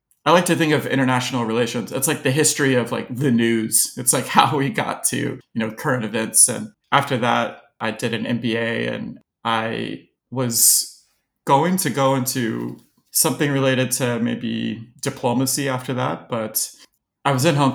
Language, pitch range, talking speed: English, 115-135 Hz, 170 wpm